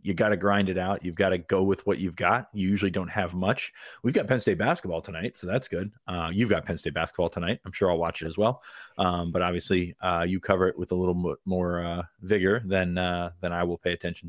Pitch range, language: 90-100 Hz, English